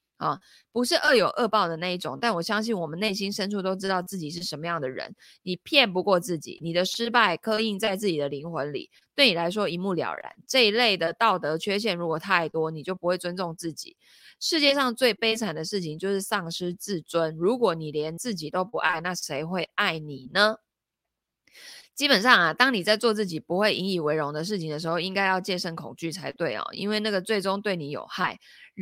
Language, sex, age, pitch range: Chinese, female, 20-39, 165-215 Hz